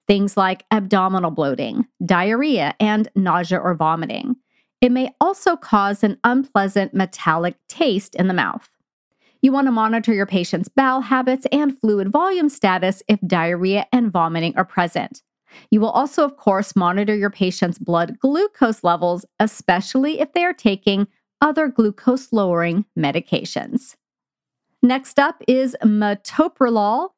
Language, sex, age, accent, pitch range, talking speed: English, female, 40-59, American, 195-265 Hz, 135 wpm